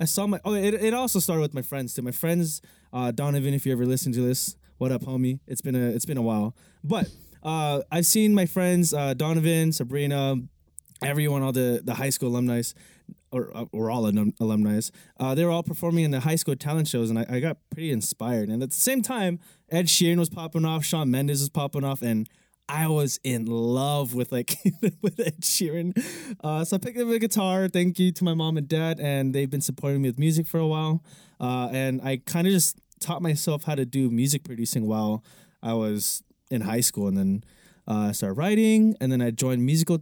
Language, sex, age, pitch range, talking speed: English, male, 20-39, 130-170 Hz, 220 wpm